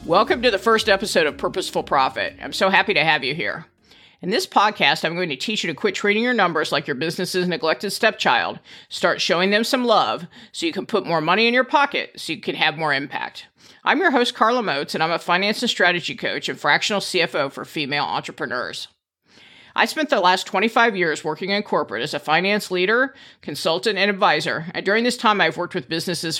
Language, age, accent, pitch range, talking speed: English, 50-69, American, 165-225 Hz, 215 wpm